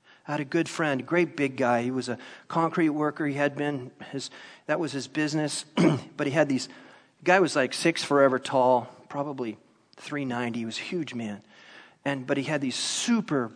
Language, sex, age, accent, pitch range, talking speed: English, male, 40-59, American, 130-155 Hz, 205 wpm